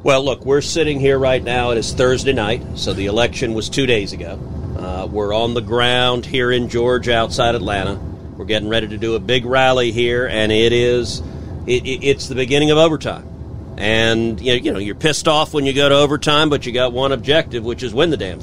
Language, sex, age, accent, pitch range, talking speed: English, male, 40-59, American, 105-130 Hz, 220 wpm